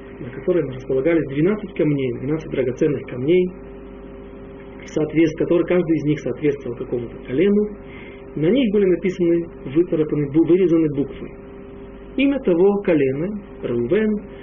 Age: 40-59